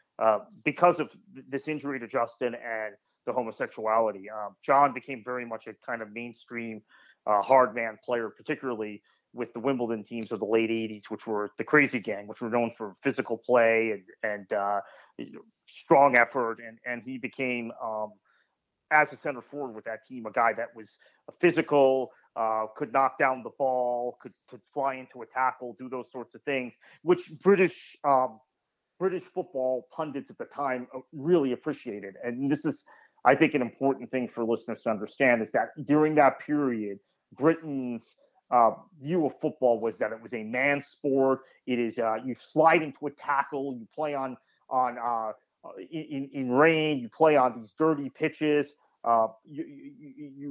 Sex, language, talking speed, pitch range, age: male, English, 180 wpm, 115-145 Hz, 30-49